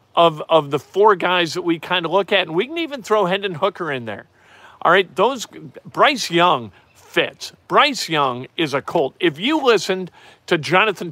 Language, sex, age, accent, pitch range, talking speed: English, male, 50-69, American, 140-210 Hz, 195 wpm